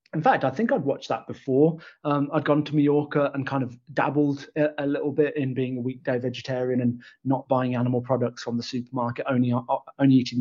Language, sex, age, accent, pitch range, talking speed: English, male, 20-39, British, 125-145 Hz, 220 wpm